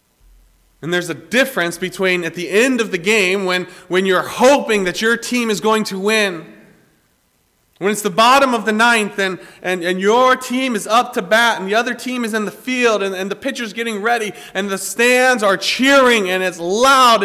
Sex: male